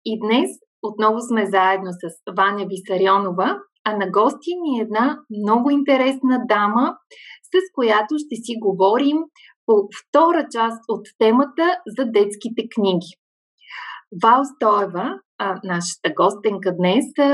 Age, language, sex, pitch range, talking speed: 30-49, Bulgarian, female, 200-280 Hz, 120 wpm